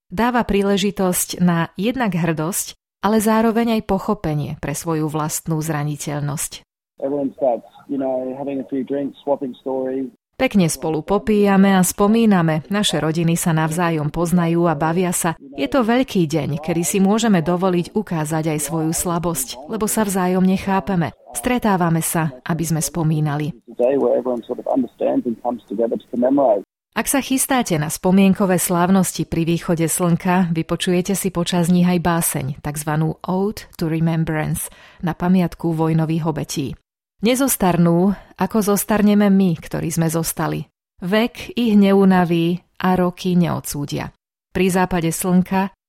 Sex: female